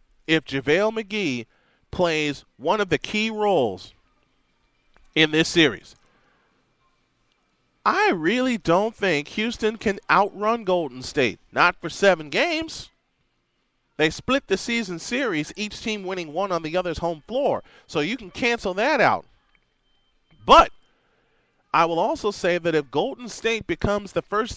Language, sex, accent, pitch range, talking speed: English, male, American, 155-225 Hz, 140 wpm